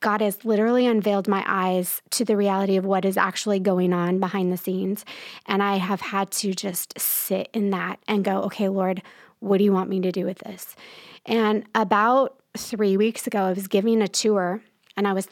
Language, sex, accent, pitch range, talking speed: English, female, American, 185-215 Hz, 210 wpm